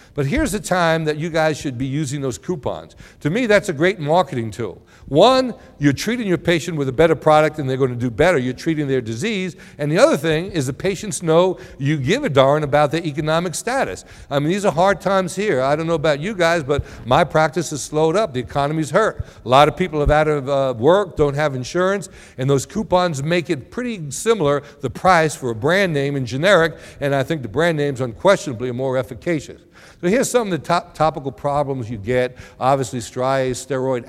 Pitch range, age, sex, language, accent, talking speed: 130-170 Hz, 60-79, male, English, American, 220 wpm